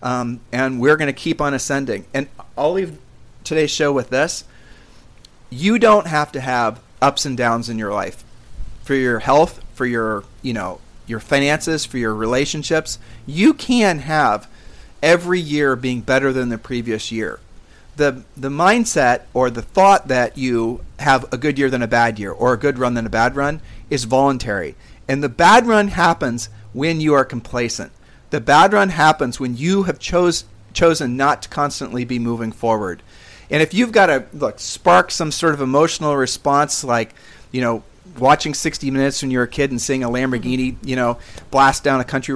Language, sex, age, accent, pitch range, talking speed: English, male, 40-59, American, 120-150 Hz, 185 wpm